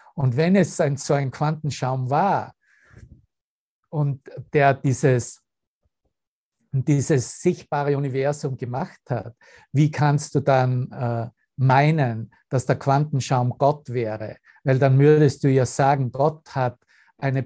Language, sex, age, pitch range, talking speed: German, male, 50-69, 130-145 Hz, 125 wpm